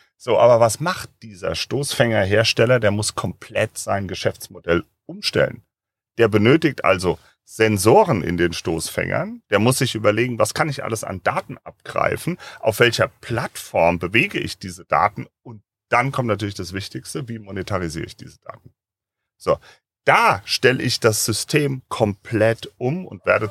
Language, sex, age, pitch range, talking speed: German, male, 40-59, 105-140 Hz, 150 wpm